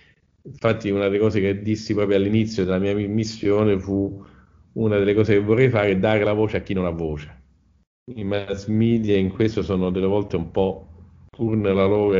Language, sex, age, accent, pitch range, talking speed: Italian, male, 50-69, native, 90-110 Hz, 195 wpm